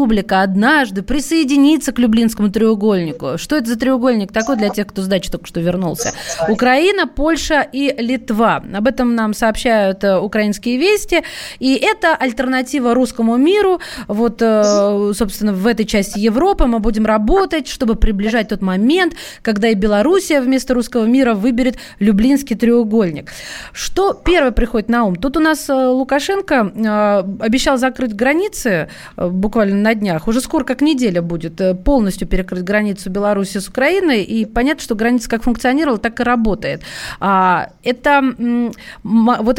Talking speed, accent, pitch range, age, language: 140 wpm, native, 205-265 Hz, 20-39, Russian